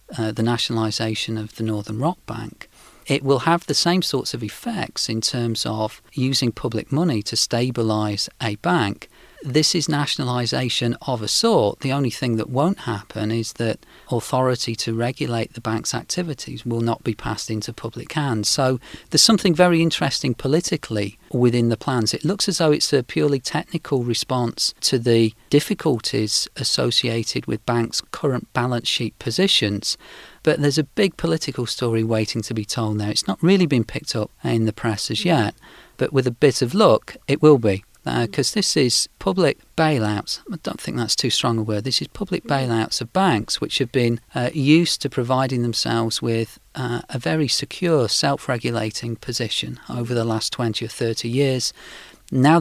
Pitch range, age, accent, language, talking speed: 115-140 Hz, 40-59, British, English, 175 wpm